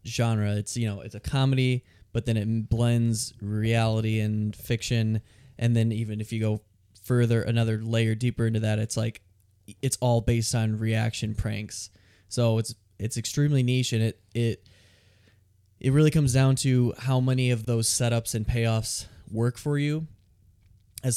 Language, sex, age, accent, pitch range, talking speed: English, male, 20-39, American, 105-125 Hz, 165 wpm